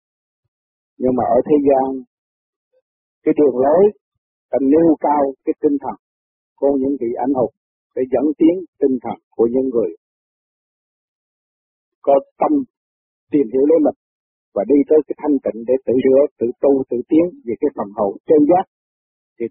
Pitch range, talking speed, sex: 120-150 Hz, 165 wpm, male